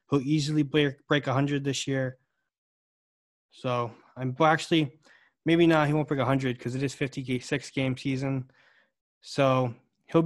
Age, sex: 20-39, male